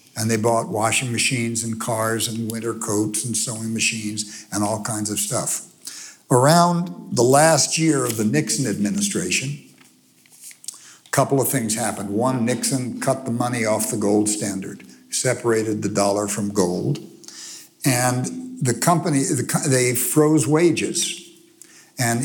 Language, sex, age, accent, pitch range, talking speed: English, male, 60-79, American, 105-140 Hz, 140 wpm